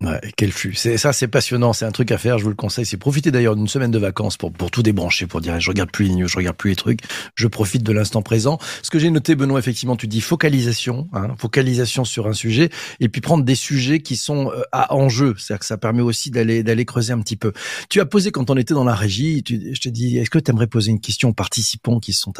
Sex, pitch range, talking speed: male, 110-140 Hz, 270 wpm